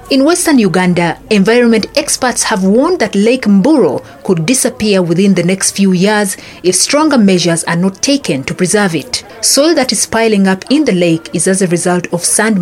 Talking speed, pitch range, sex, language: 190 wpm, 180-225 Hz, female, English